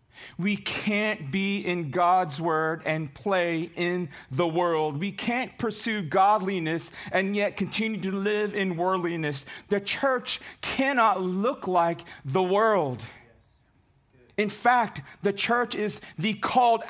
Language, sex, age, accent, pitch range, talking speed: English, male, 40-59, American, 135-195 Hz, 130 wpm